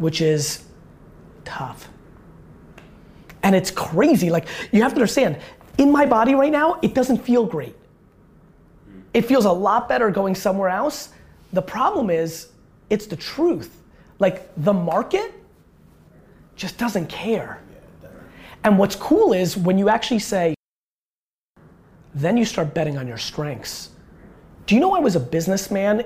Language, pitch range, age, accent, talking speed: English, 155-210 Hz, 30-49, American, 145 wpm